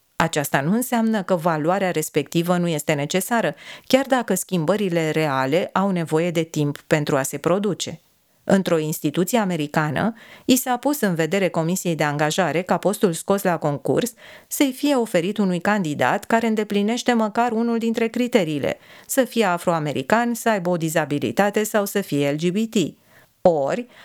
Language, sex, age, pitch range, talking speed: Romanian, female, 40-59, 165-220 Hz, 150 wpm